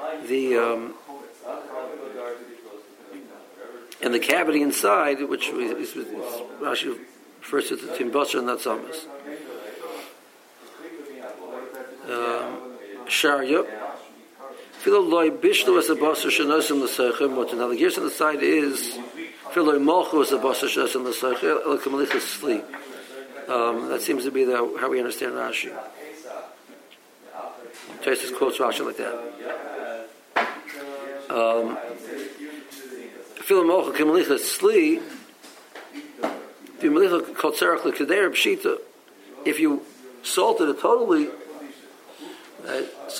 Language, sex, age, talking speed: English, male, 60-79, 95 wpm